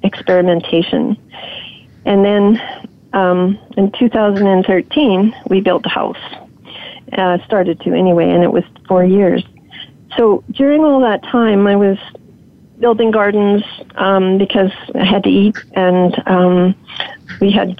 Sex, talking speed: female, 130 wpm